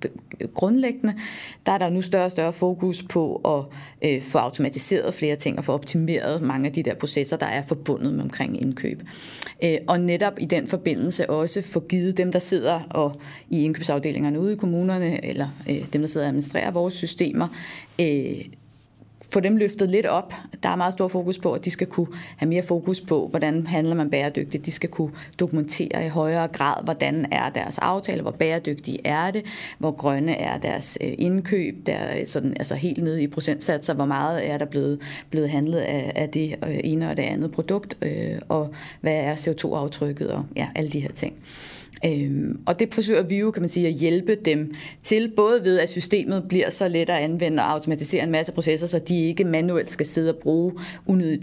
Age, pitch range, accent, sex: 30-49, 150-180 Hz, native, female